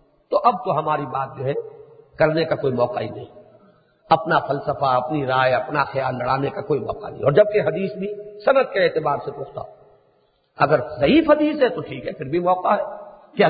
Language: English